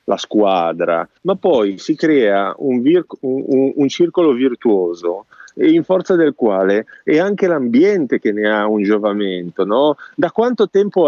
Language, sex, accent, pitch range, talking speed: Italian, male, native, 130-200 Hz, 140 wpm